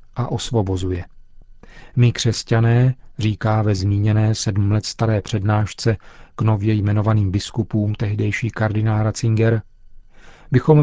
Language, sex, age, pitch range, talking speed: Czech, male, 40-59, 100-120 Hz, 105 wpm